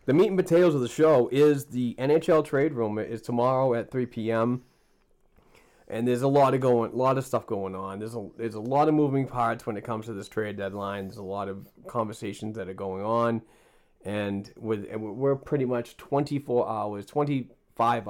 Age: 30-49